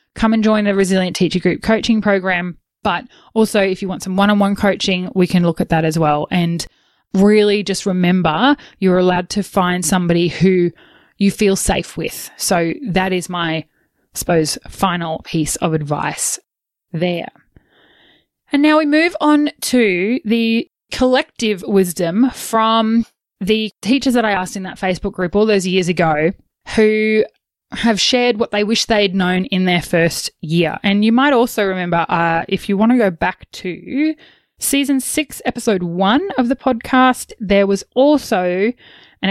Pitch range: 180-230 Hz